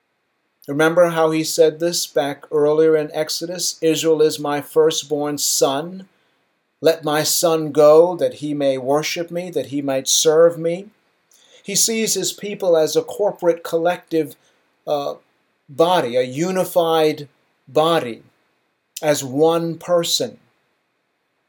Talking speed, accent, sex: 125 wpm, American, male